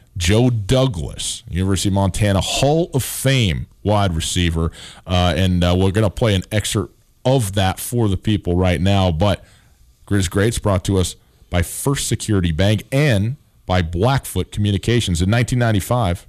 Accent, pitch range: American, 90-115 Hz